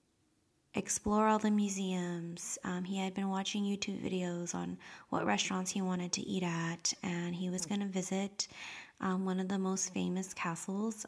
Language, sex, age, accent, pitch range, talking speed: English, female, 20-39, American, 180-215 Hz, 170 wpm